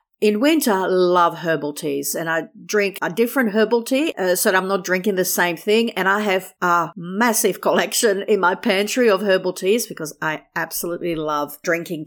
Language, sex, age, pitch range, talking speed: English, female, 50-69, 175-245 Hz, 195 wpm